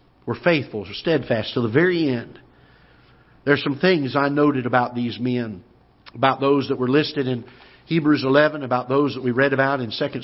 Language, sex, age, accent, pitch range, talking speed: English, male, 50-69, American, 125-150 Hz, 190 wpm